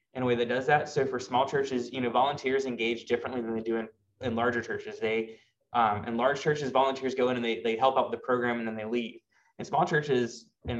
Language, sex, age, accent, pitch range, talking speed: English, male, 20-39, American, 115-130 Hz, 255 wpm